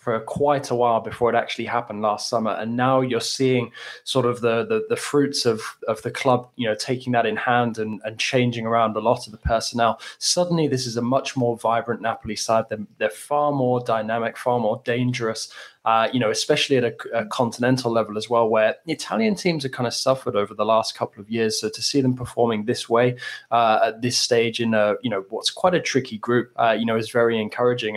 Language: English